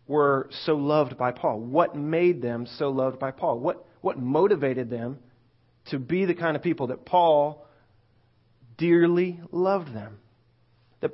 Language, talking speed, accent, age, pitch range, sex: English, 150 wpm, American, 30-49, 125-165 Hz, male